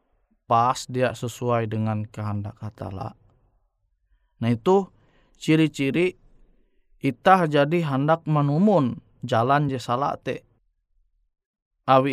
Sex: male